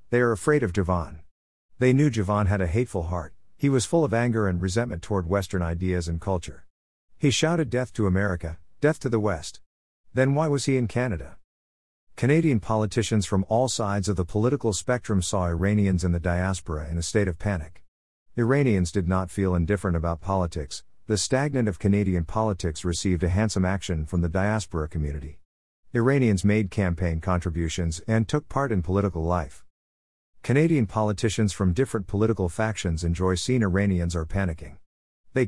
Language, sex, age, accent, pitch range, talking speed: English, male, 50-69, American, 85-110 Hz, 170 wpm